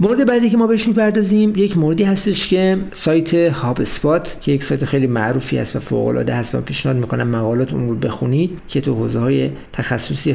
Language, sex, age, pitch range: Persian, male, 50-69, 130-180 Hz